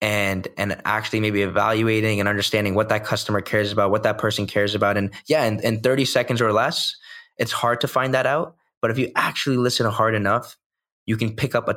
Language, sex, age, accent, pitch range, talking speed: English, male, 20-39, American, 100-115 Hz, 220 wpm